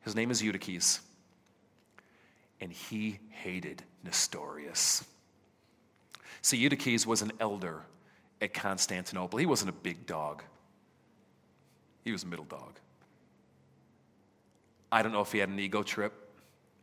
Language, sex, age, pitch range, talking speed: English, male, 40-59, 100-135 Hz, 120 wpm